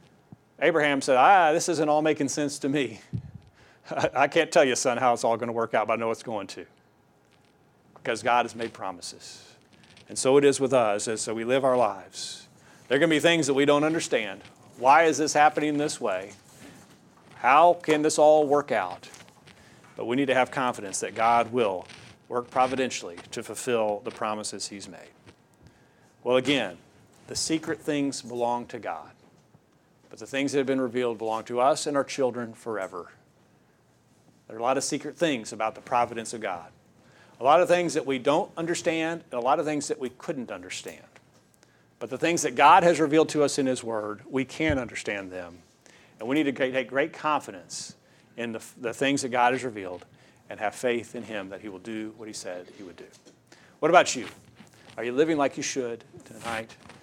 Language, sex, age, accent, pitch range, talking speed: English, male, 40-59, American, 115-150 Hz, 200 wpm